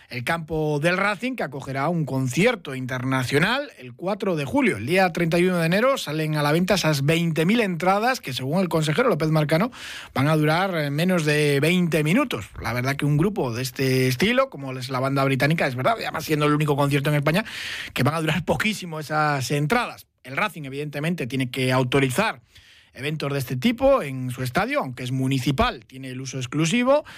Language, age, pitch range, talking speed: Spanish, 30-49, 130-175 Hz, 190 wpm